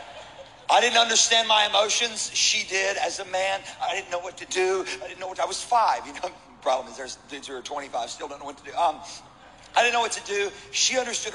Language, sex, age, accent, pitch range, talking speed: English, male, 40-59, American, 175-235 Hz, 255 wpm